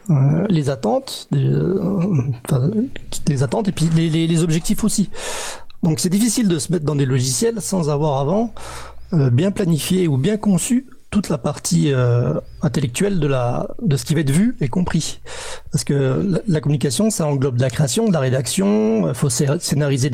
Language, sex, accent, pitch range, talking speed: French, male, French, 140-185 Hz, 190 wpm